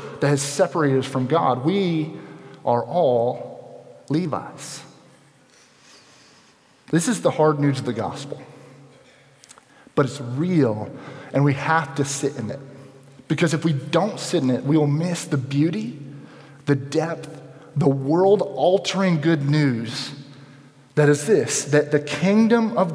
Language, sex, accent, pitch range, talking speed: English, male, American, 135-175 Hz, 140 wpm